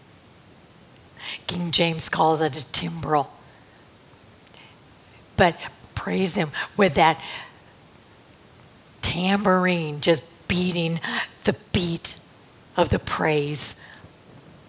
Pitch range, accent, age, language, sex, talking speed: 160-190 Hz, American, 50-69, English, female, 80 wpm